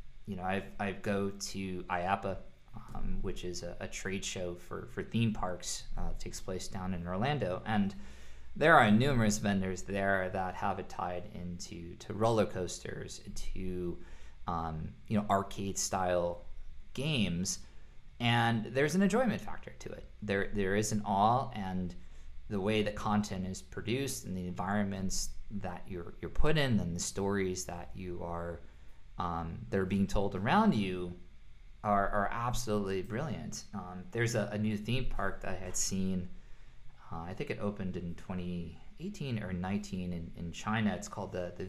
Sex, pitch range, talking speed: male, 90-105 Hz, 165 wpm